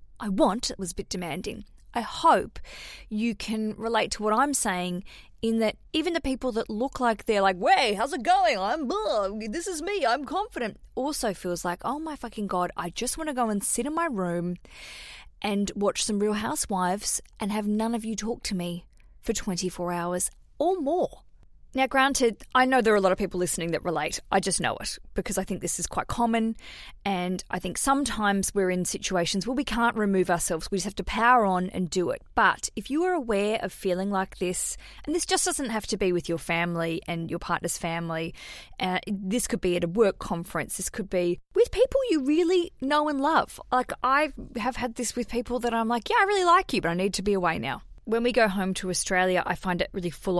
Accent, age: Australian, 20-39